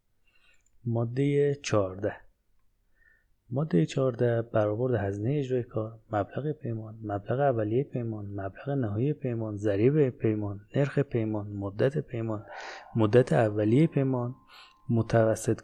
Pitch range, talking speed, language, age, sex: 100-125 Hz, 100 wpm, Persian, 30-49, male